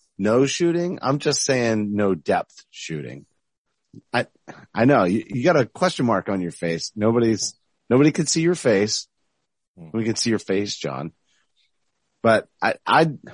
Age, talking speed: 30-49, 155 wpm